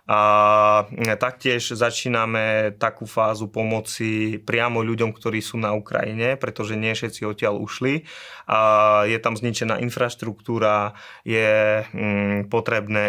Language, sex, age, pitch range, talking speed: Slovak, male, 20-39, 105-115 Hz, 105 wpm